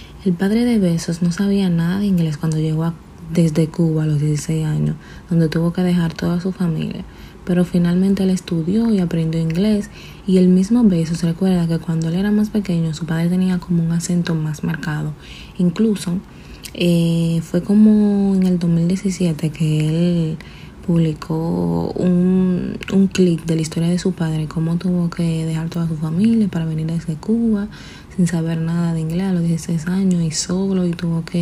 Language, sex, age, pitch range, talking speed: Spanish, female, 30-49, 160-180 Hz, 180 wpm